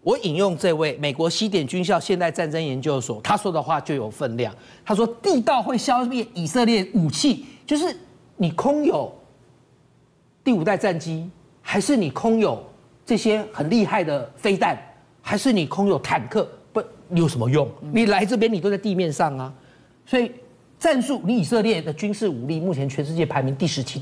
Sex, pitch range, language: male, 145-225 Hz, Chinese